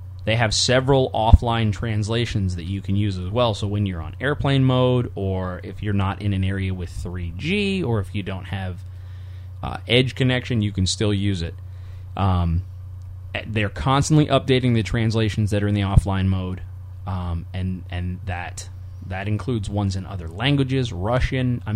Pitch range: 95-115 Hz